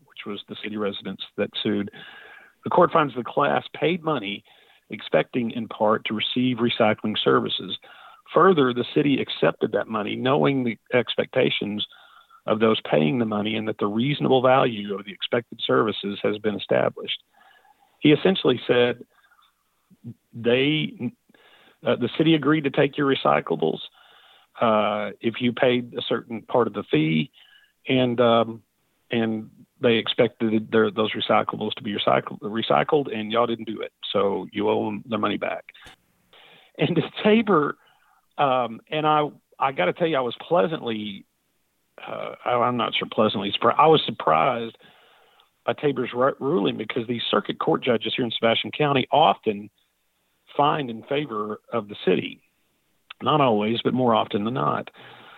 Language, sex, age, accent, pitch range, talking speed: English, male, 50-69, American, 110-135 Hz, 155 wpm